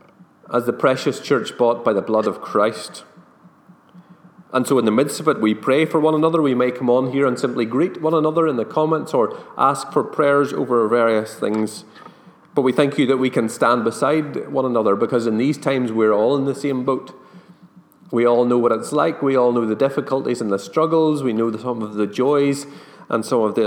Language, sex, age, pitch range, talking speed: English, male, 30-49, 110-145 Hz, 220 wpm